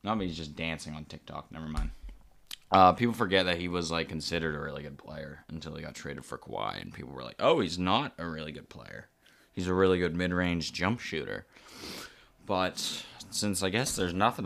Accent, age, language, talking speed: American, 20-39, English, 210 wpm